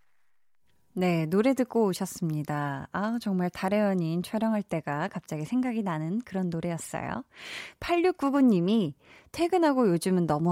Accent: native